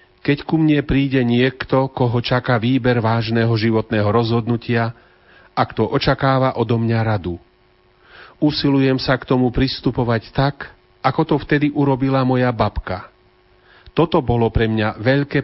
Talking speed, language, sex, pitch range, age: 130 wpm, Slovak, male, 110-130 Hz, 40-59